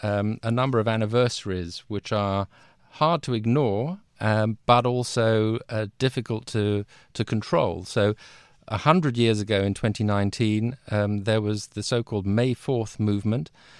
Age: 50-69